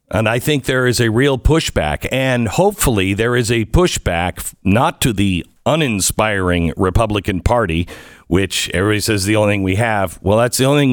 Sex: male